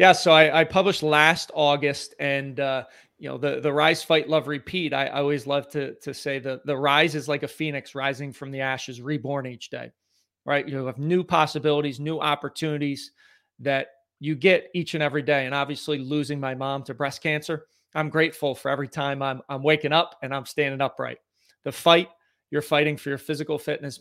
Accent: American